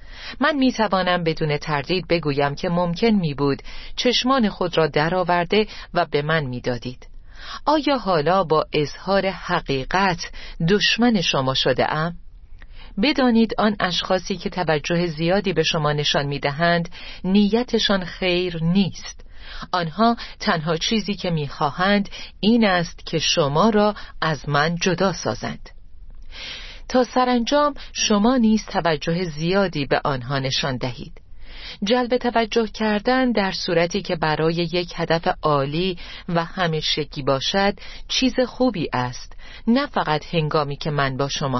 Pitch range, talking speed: 145-205 Hz, 125 wpm